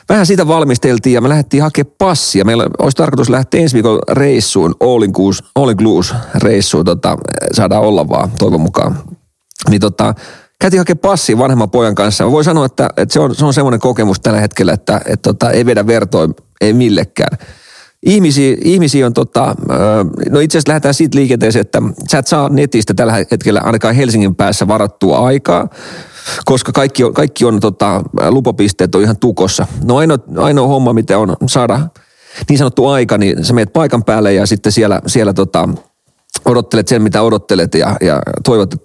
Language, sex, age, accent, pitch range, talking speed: Finnish, male, 40-59, native, 110-145 Hz, 170 wpm